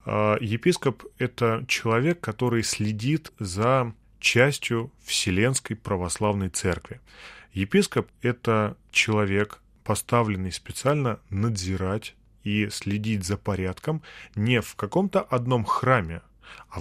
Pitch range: 100-125 Hz